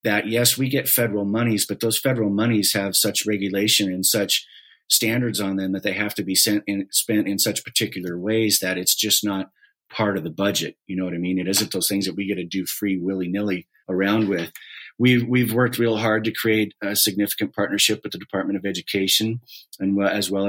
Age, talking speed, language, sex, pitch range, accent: 30-49, 215 wpm, English, male, 95-110 Hz, American